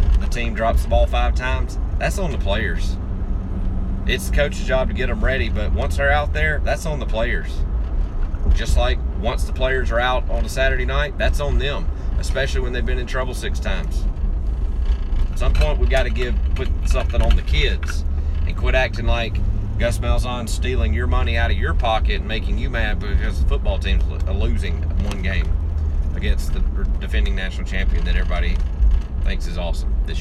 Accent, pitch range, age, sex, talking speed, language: American, 65-85 Hz, 30-49, male, 195 wpm, English